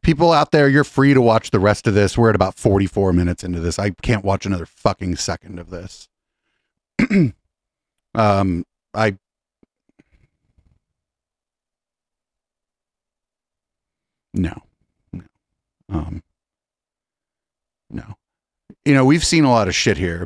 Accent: American